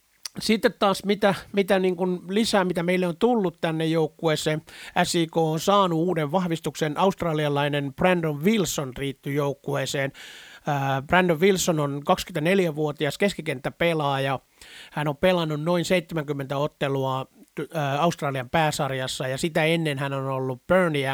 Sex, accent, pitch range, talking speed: male, native, 135-175 Hz, 120 wpm